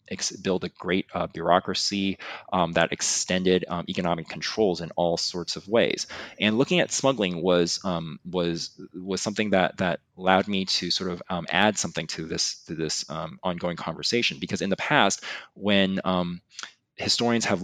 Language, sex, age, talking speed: English, male, 20-39, 170 wpm